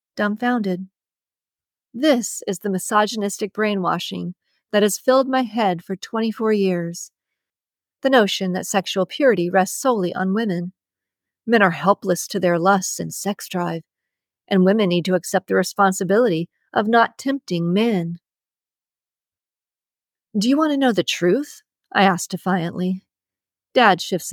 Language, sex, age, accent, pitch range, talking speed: English, female, 50-69, American, 180-230 Hz, 135 wpm